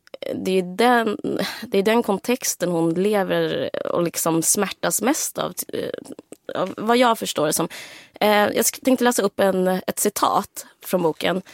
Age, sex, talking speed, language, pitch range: 20-39, female, 135 wpm, Swedish, 175-230 Hz